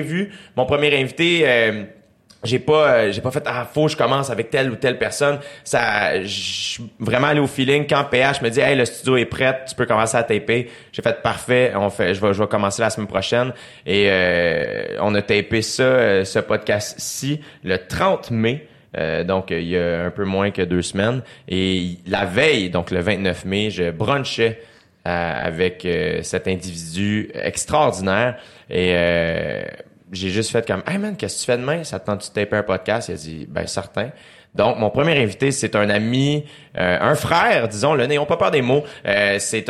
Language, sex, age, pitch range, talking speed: French, male, 30-49, 100-130 Hz, 215 wpm